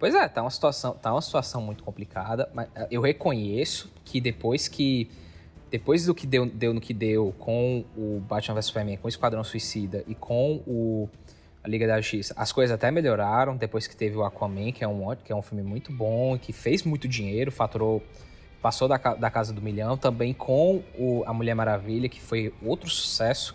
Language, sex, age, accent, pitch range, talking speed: Portuguese, male, 20-39, Brazilian, 105-130 Hz, 200 wpm